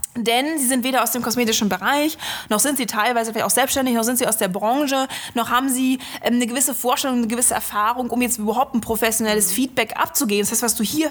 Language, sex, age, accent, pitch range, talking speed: German, female, 20-39, German, 215-265 Hz, 230 wpm